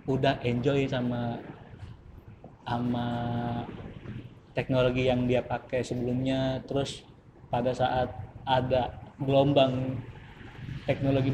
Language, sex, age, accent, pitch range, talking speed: Indonesian, male, 20-39, native, 125-150 Hz, 80 wpm